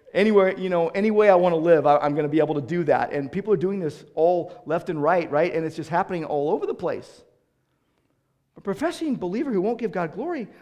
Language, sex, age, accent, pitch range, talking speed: English, male, 40-59, American, 140-200 Hz, 245 wpm